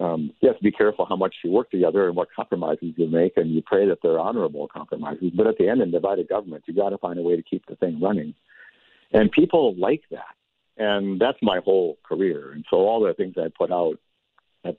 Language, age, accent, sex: English, 60-79, American, male